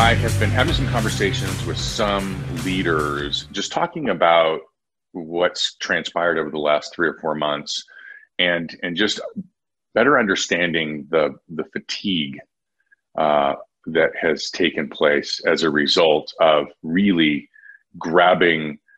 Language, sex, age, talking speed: English, male, 40-59, 125 wpm